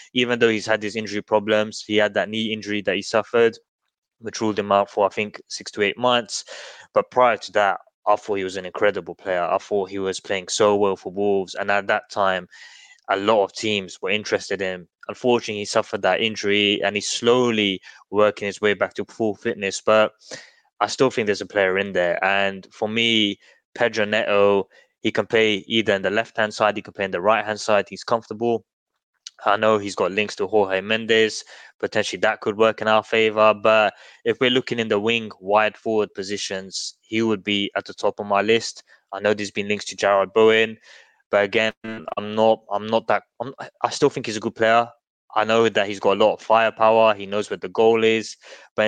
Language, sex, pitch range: English, male, 100-115 Hz